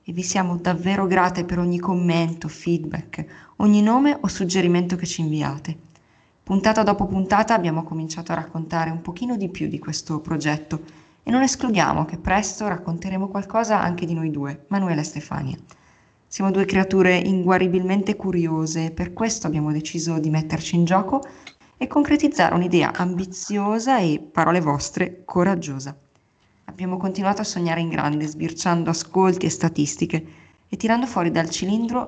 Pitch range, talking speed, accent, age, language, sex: 160-195 Hz, 150 wpm, native, 20-39, Italian, female